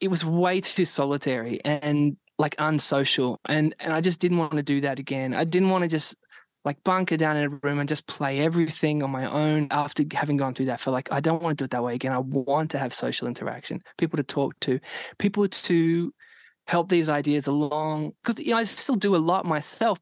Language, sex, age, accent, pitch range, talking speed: English, male, 20-39, Australian, 140-170 Hz, 235 wpm